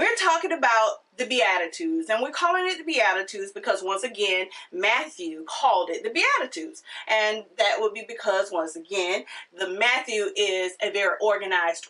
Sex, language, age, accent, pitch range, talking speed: female, English, 30-49, American, 205-310 Hz, 160 wpm